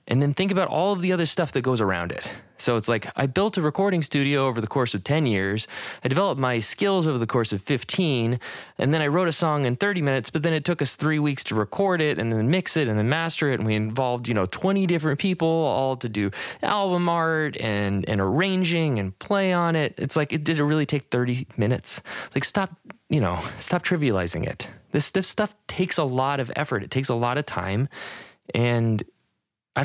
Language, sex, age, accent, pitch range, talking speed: English, male, 20-39, American, 115-165 Hz, 230 wpm